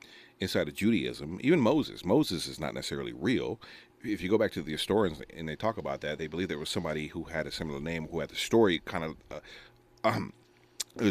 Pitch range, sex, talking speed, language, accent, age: 80-110 Hz, male, 225 wpm, English, American, 40-59